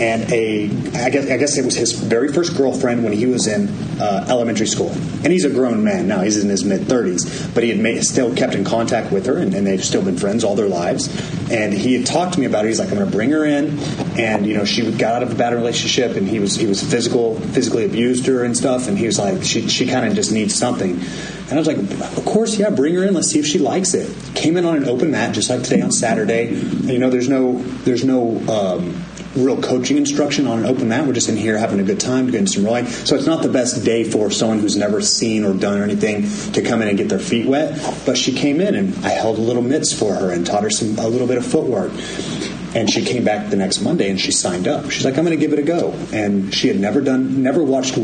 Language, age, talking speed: English, 30-49, 275 wpm